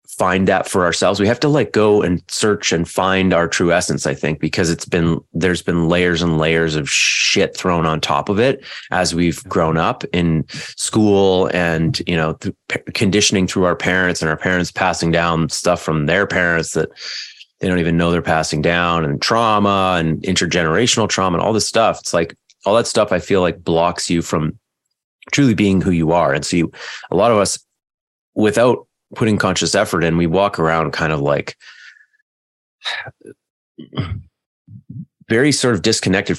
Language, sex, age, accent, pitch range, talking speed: English, male, 30-49, American, 80-95 Hz, 180 wpm